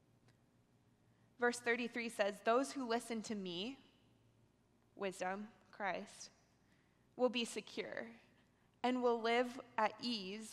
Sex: female